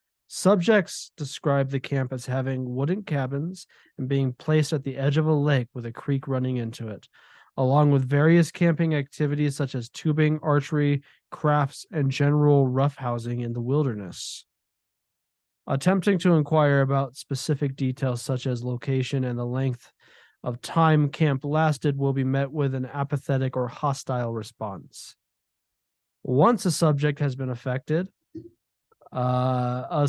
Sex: male